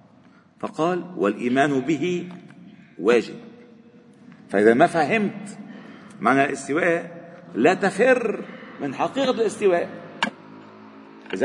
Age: 50-69